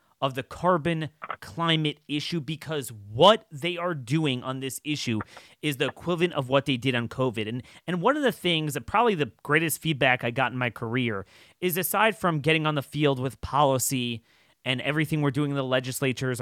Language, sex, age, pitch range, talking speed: English, male, 30-49, 130-180 Hz, 195 wpm